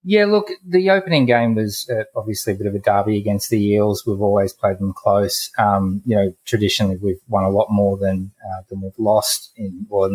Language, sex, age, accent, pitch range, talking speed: English, male, 20-39, Australian, 95-110 Hz, 225 wpm